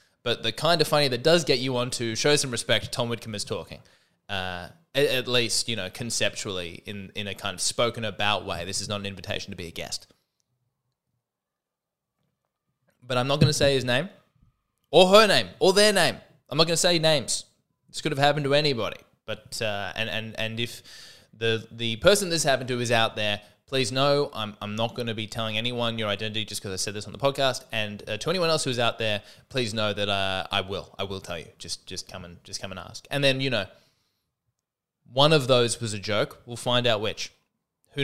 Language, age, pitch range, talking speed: English, 20-39, 105-135 Hz, 225 wpm